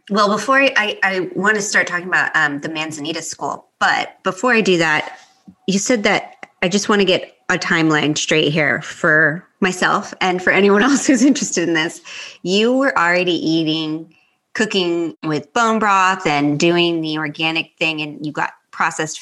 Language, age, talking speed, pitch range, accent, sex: English, 20-39, 180 wpm, 155-205 Hz, American, female